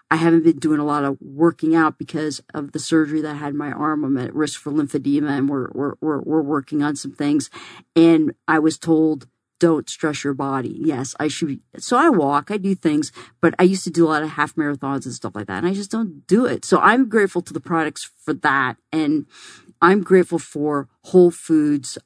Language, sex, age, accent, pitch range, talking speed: English, female, 40-59, American, 145-170 Hz, 220 wpm